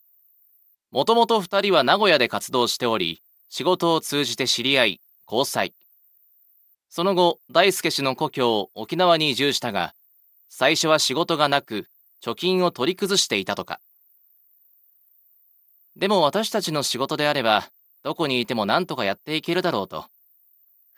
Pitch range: 130-180 Hz